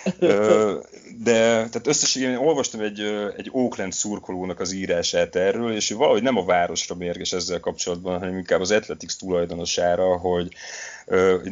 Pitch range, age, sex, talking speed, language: 85-105 Hz, 30-49, male, 130 wpm, Hungarian